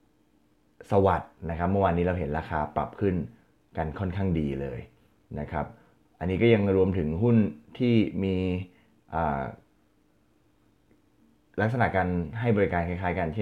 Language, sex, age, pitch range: Thai, male, 20-39, 80-100 Hz